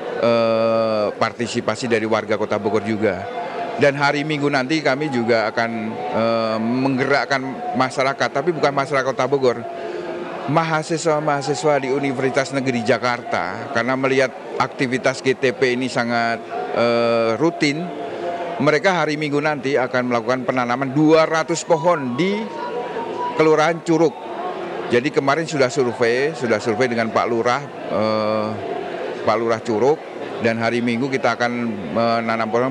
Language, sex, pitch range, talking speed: Indonesian, male, 115-145 Hz, 125 wpm